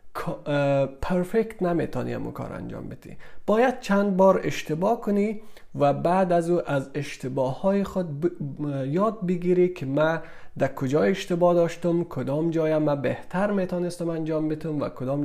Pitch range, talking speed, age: 130-175 Hz, 150 wpm, 30-49